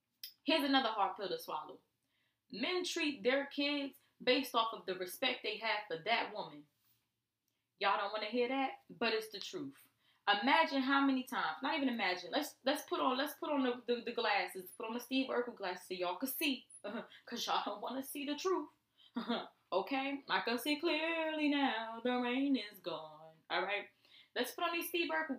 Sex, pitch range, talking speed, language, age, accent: female, 210-285 Hz, 200 wpm, English, 20-39, American